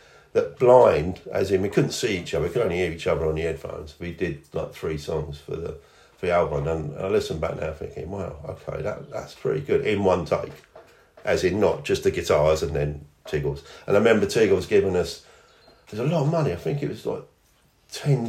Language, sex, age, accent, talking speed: English, male, 50-69, British, 225 wpm